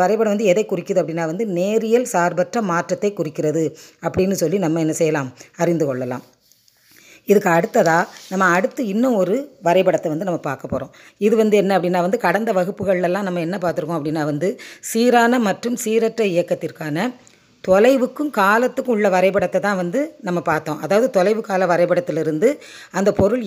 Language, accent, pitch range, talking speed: Tamil, native, 165-210 Hz, 150 wpm